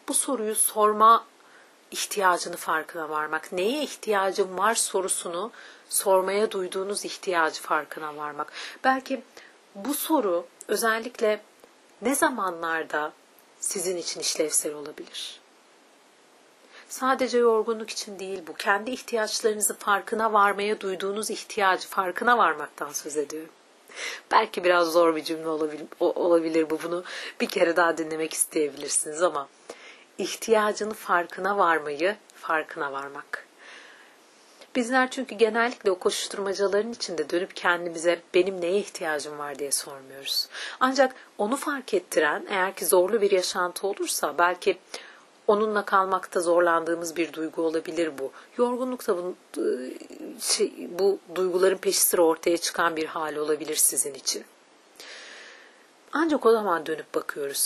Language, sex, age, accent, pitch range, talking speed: Turkish, female, 40-59, native, 170-225 Hz, 115 wpm